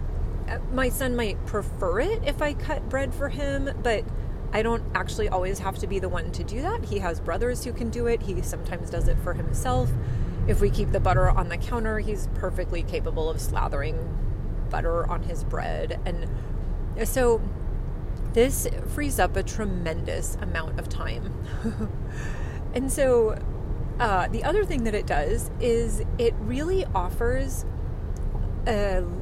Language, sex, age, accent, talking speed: English, female, 30-49, American, 160 wpm